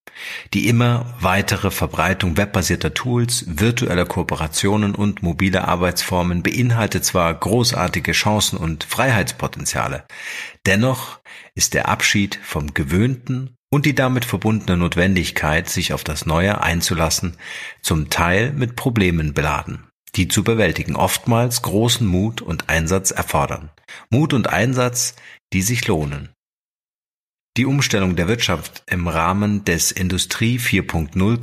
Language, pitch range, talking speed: German, 90-120 Hz, 120 wpm